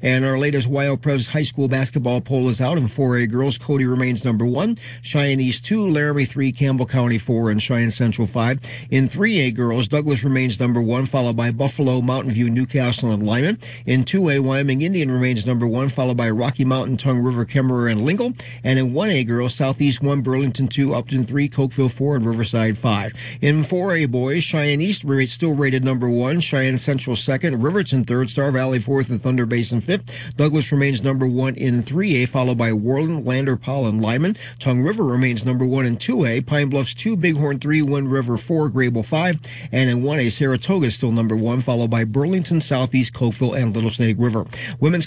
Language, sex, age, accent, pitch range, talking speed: English, male, 40-59, American, 120-140 Hz, 195 wpm